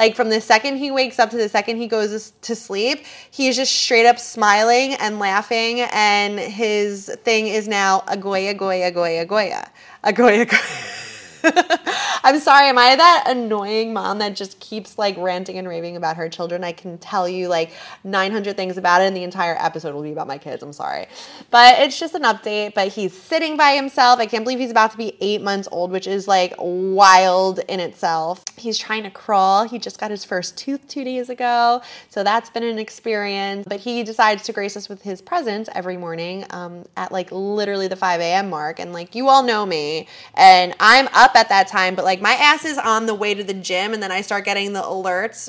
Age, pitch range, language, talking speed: 20-39, 185-235 Hz, English, 215 wpm